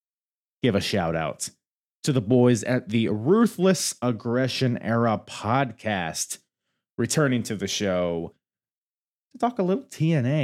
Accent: American